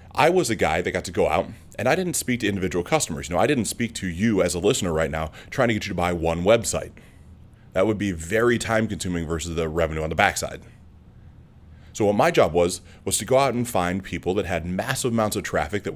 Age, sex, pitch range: 30-49, male, 90-110 Hz